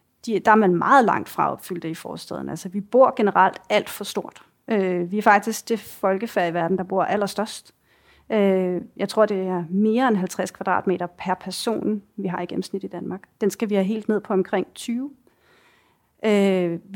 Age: 30-49